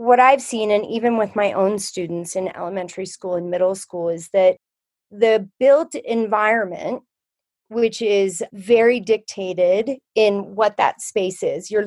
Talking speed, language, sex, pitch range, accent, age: 150 wpm, English, female, 195-245 Hz, American, 30-49